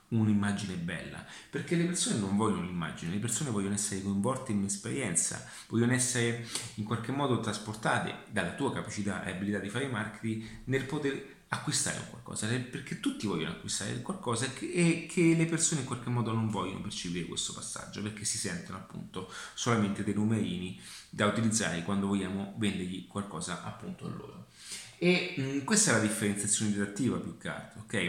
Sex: male